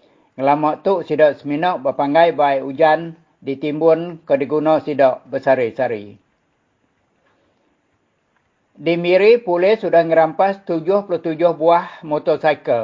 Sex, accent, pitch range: male, Indonesian, 145-170 Hz